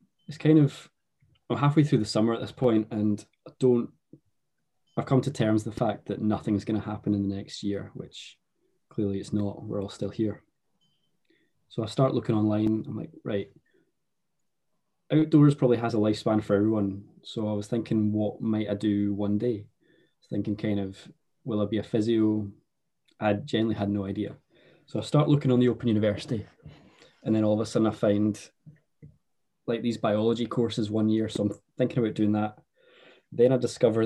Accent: British